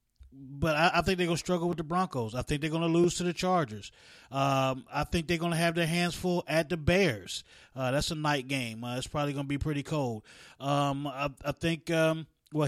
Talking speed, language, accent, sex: 240 wpm, English, American, male